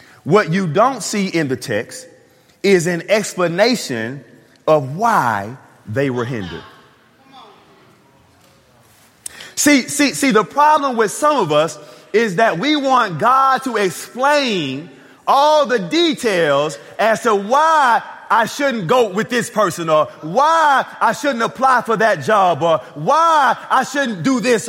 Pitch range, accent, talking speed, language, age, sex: 195-270 Hz, American, 140 wpm, English, 30-49, male